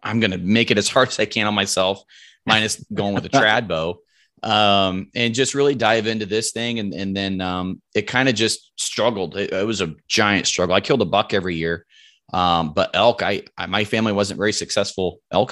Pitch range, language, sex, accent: 90-110 Hz, English, male, American